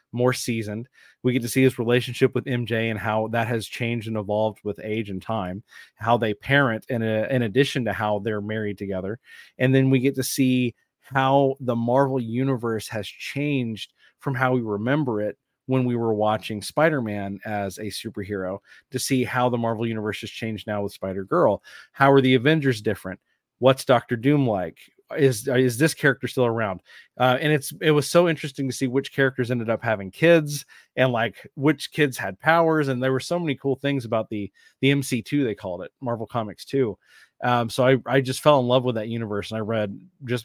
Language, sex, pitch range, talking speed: English, male, 105-135 Hz, 205 wpm